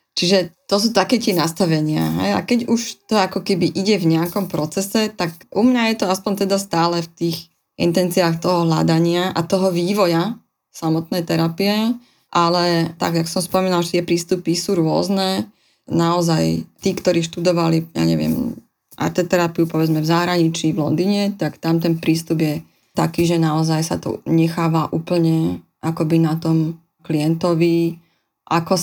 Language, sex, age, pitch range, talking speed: Slovak, female, 20-39, 160-180 Hz, 155 wpm